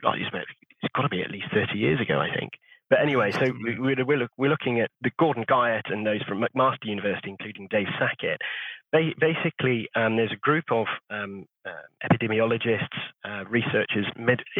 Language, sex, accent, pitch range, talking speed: English, male, British, 105-130 Hz, 165 wpm